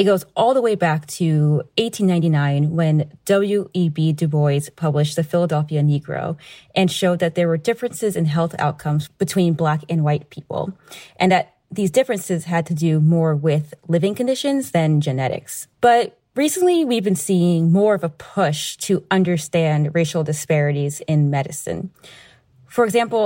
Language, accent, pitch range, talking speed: English, American, 150-190 Hz, 155 wpm